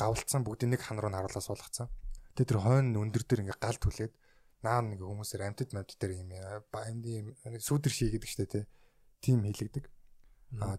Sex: male